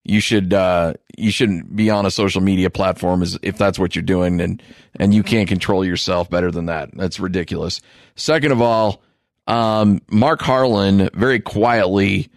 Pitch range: 100-120 Hz